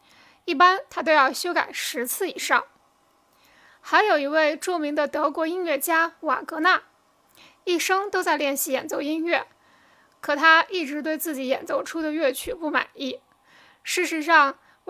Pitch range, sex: 280-345 Hz, female